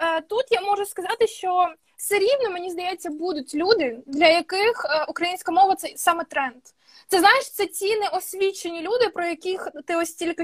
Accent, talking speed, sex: native, 165 wpm, female